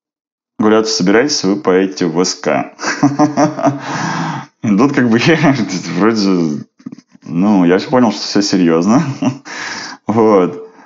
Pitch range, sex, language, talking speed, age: 85-105 Hz, male, Russian, 115 wpm, 20-39